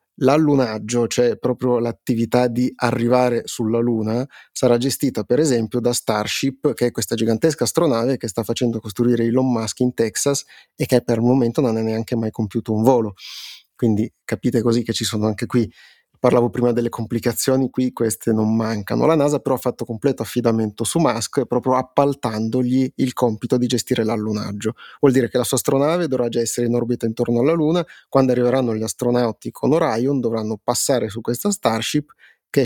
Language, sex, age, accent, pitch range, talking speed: Italian, male, 30-49, native, 115-130 Hz, 180 wpm